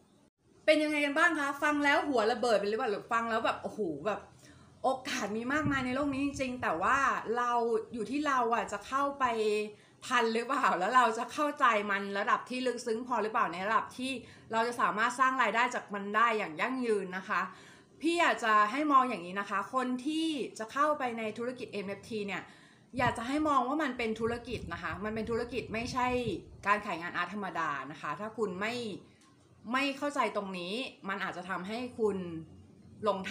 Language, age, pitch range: Thai, 30-49, 205-255 Hz